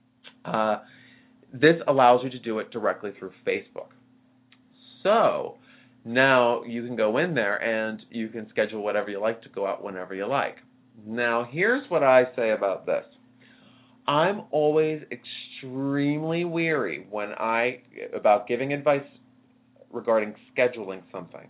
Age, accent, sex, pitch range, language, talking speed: 30-49, American, male, 110-135 Hz, English, 135 wpm